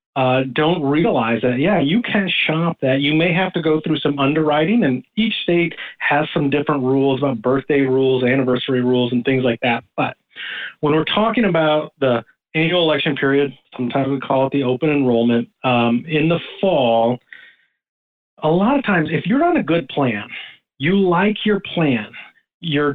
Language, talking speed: English, 180 wpm